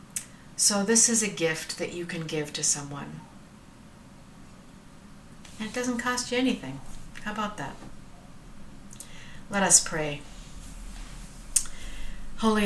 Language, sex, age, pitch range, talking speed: English, female, 50-69, 160-195 Hz, 115 wpm